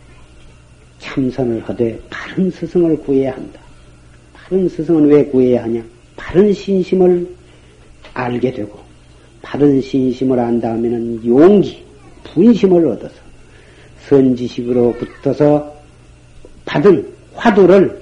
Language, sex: Korean, male